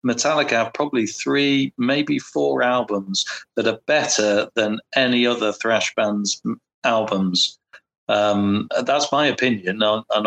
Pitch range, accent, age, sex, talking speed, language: 100-120 Hz, British, 50-69, male, 125 wpm, English